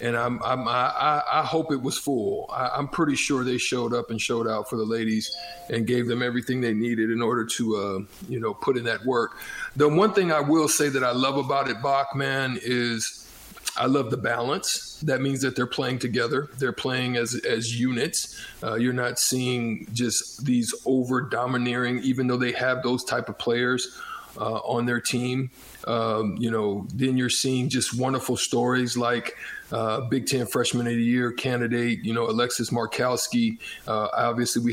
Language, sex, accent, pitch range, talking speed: English, male, American, 120-130 Hz, 190 wpm